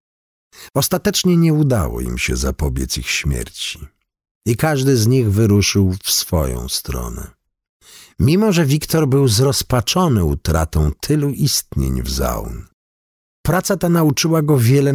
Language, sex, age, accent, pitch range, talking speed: Polish, male, 50-69, native, 95-155 Hz, 125 wpm